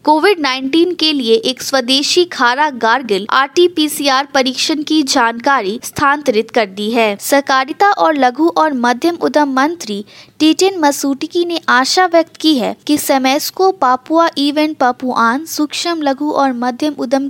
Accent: native